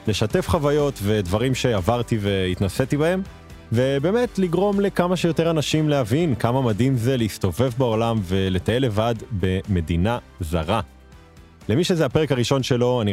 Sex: male